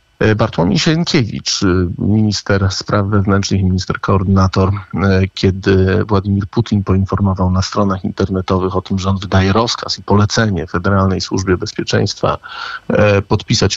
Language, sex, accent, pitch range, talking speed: Polish, male, native, 95-110 Hz, 120 wpm